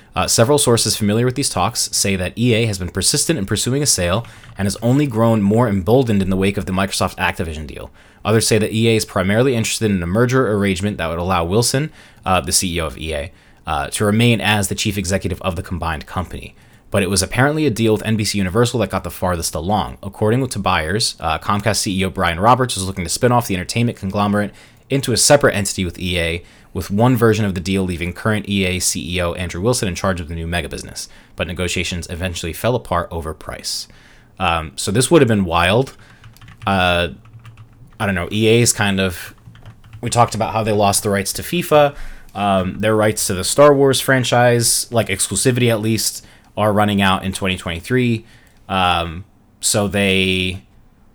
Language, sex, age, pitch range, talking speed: English, male, 20-39, 95-115 Hz, 195 wpm